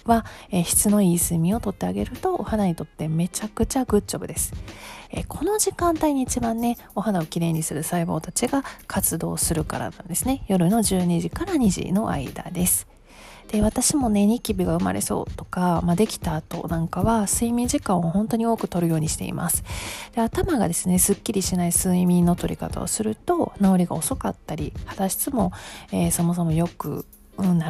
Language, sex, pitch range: Japanese, female, 170-225 Hz